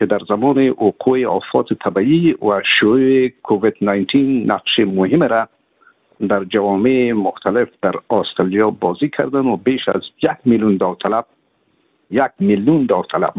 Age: 60-79